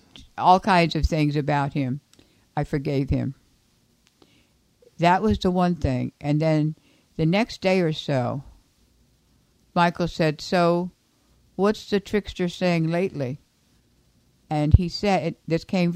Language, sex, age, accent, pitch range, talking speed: English, female, 60-79, American, 135-170 Hz, 130 wpm